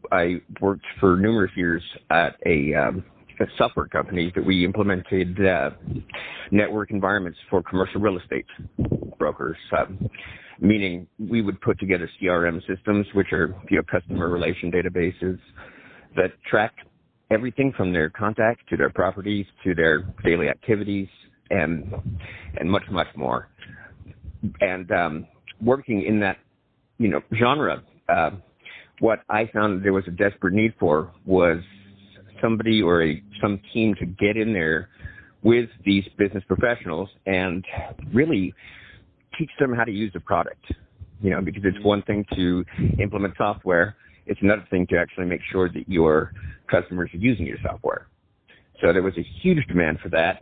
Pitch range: 90-105 Hz